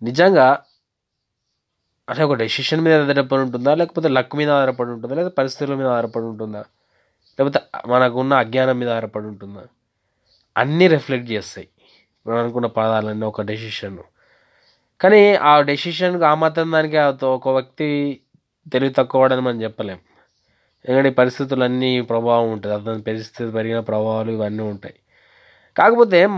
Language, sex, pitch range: Telugu, male, 120-160 Hz